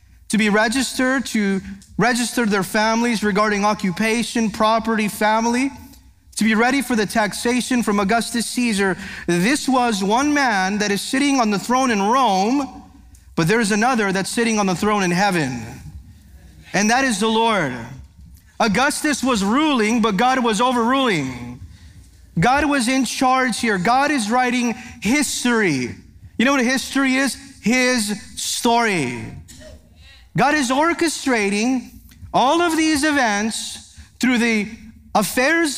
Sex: male